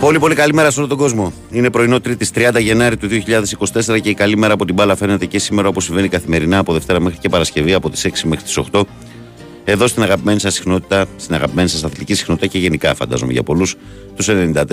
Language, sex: Greek, male